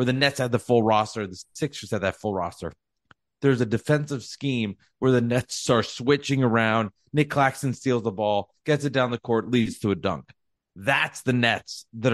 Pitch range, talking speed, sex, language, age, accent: 110-145 Hz, 205 wpm, male, English, 30-49, American